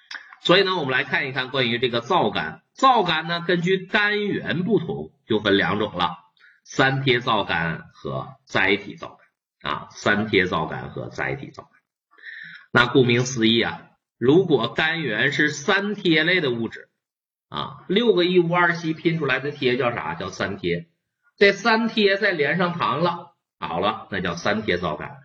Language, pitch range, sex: Chinese, 120-175 Hz, male